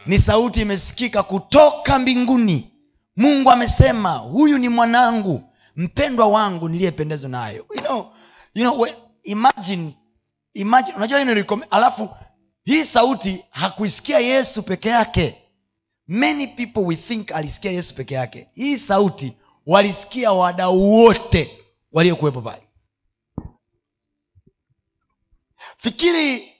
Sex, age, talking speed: male, 30-49, 105 wpm